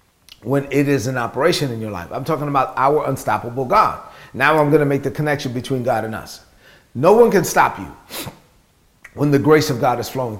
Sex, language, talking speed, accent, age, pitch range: male, English, 215 wpm, American, 40-59, 135-170 Hz